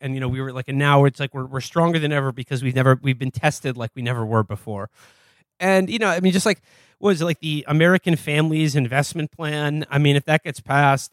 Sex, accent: male, American